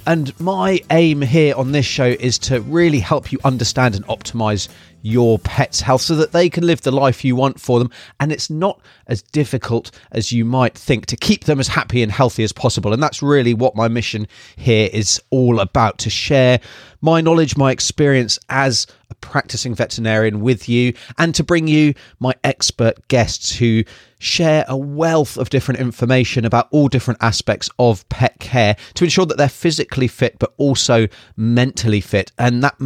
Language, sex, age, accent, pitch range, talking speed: English, male, 30-49, British, 115-145 Hz, 185 wpm